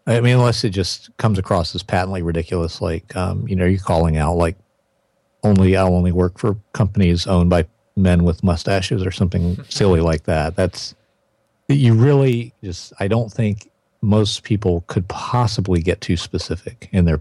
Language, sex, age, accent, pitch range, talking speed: English, male, 40-59, American, 90-110 Hz, 180 wpm